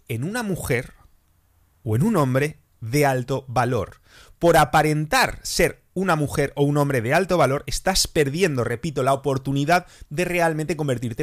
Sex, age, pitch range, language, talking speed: male, 30-49, 115-155 Hz, English, 155 wpm